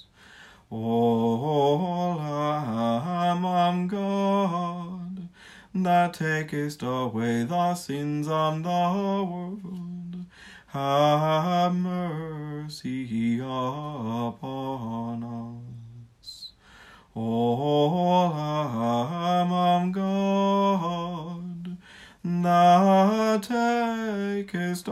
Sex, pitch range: male, 115-175 Hz